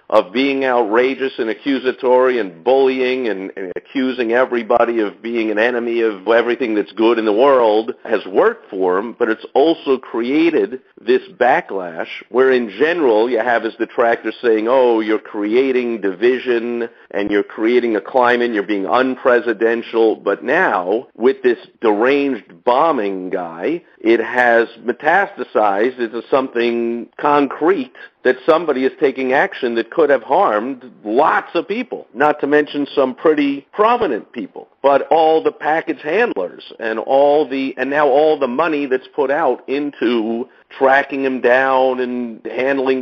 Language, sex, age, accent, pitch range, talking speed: English, male, 50-69, American, 115-135 Hz, 150 wpm